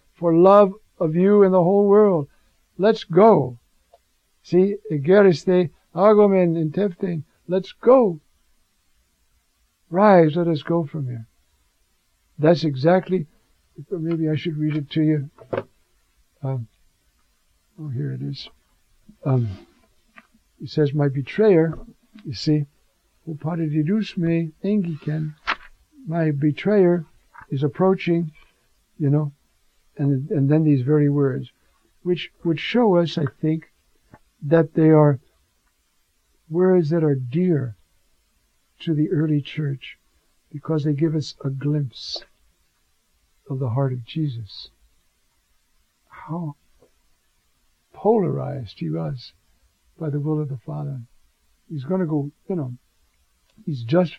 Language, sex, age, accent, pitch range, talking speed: English, male, 60-79, American, 125-170 Hz, 110 wpm